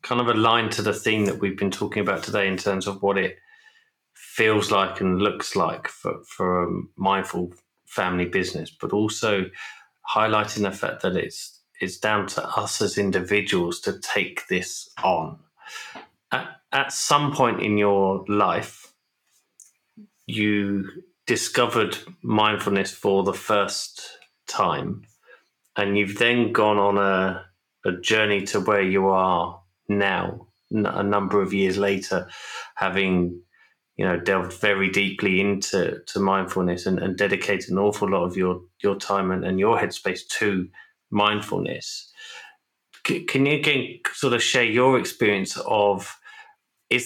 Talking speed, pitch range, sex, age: 145 wpm, 95-110 Hz, male, 30-49